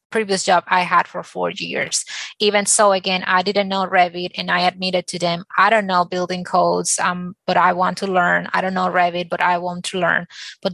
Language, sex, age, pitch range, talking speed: English, female, 20-39, 180-205 Hz, 225 wpm